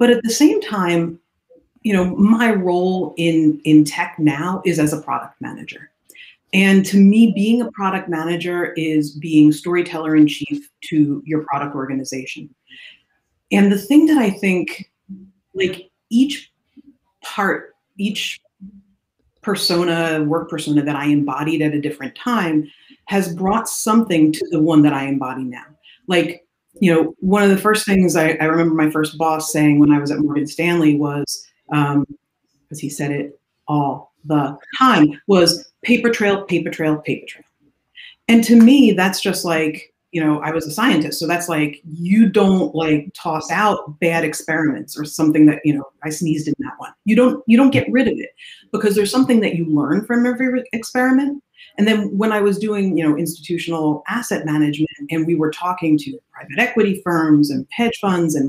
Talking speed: 175 wpm